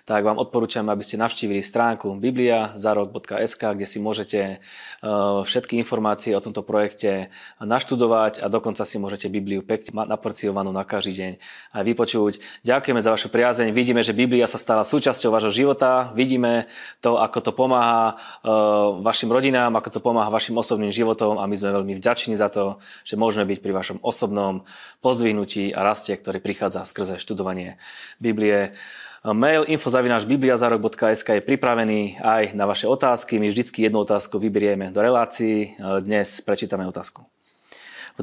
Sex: male